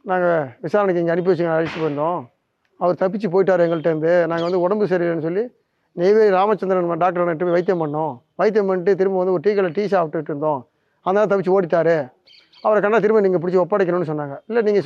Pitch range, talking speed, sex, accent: 170-200 Hz, 180 wpm, male, native